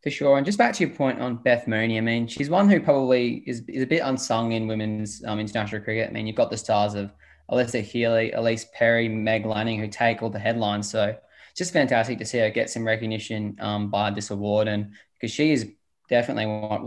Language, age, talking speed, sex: English, 20-39, 225 wpm, male